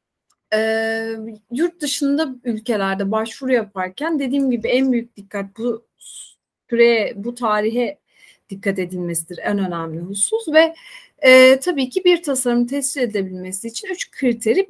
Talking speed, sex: 125 wpm, female